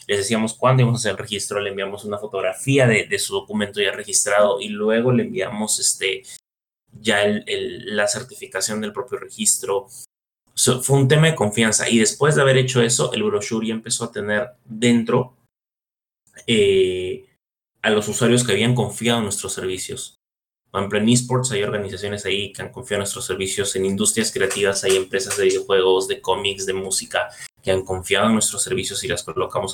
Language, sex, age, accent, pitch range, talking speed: Spanish, male, 20-39, Mexican, 105-150 Hz, 190 wpm